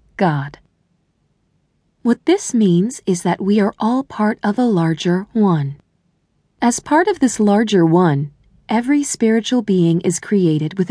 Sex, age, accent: female, 30-49, American